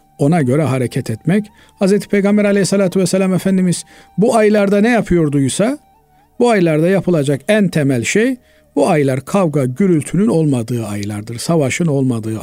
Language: Turkish